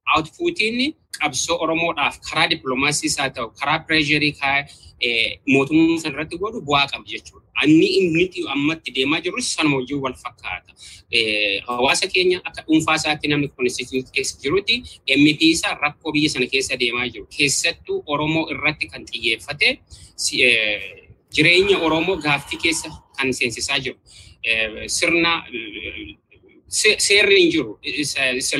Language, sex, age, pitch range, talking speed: Swedish, male, 30-49, 135-195 Hz, 90 wpm